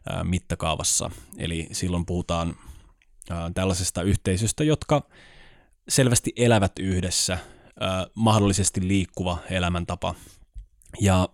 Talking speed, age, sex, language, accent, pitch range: 75 wpm, 20-39, male, Finnish, native, 90-105 Hz